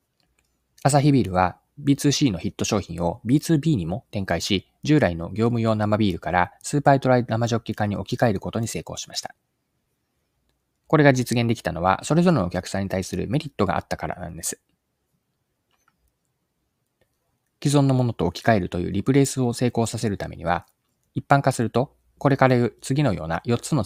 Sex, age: male, 20-39